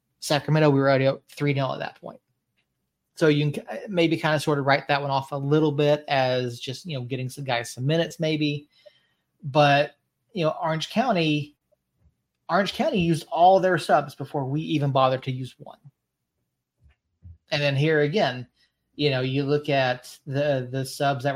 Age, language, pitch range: 30-49, English, 135-160 Hz